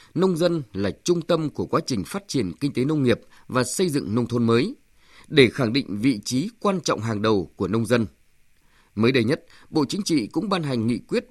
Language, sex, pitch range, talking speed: Vietnamese, male, 115-165 Hz, 230 wpm